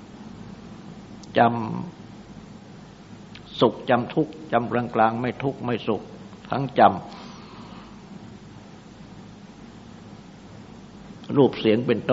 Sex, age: male, 60-79